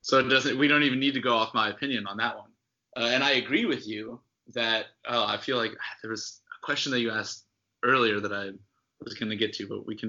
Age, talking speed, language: 20-39, 270 wpm, English